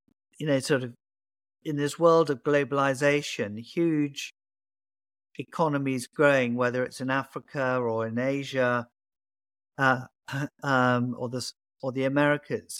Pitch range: 115-150 Hz